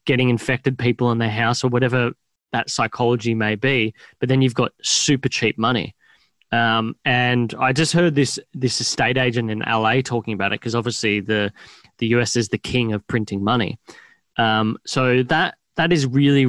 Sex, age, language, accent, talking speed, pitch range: male, 10-29, English, Australian, 180 wpm, 115-130 Hz